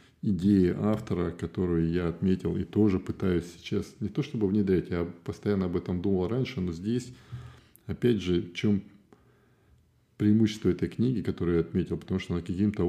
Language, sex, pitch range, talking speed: Russian, male, 90-110 Hz, 160 wpm